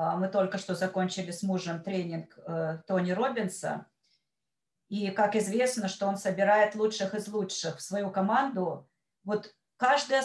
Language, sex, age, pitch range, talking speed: Russian, female, 40-59, 195-225 Hz, 135 wpm